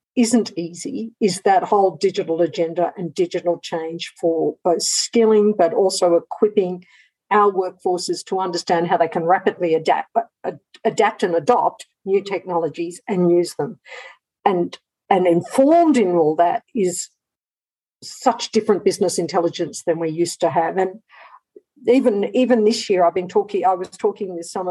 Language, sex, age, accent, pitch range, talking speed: English, female, 50-69, Australian, 180-245 Hz, 150 wpm